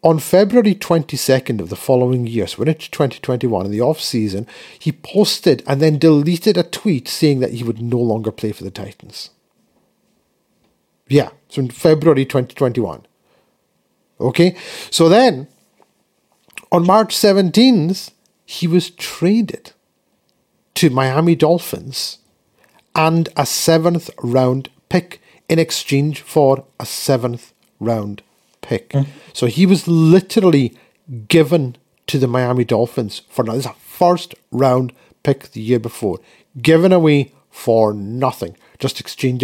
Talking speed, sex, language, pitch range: 130 wpm, male, English, 125-170 Hz